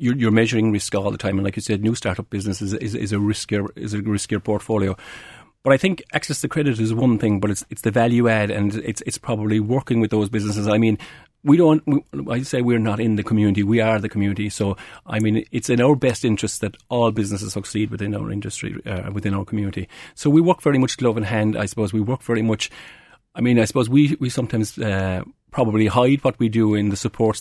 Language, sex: English, male